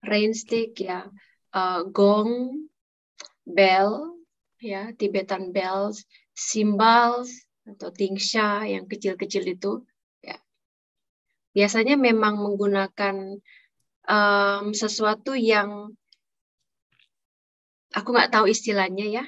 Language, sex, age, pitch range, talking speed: Indonesian, female, 20-39, 190-230 Hz, 80 wpm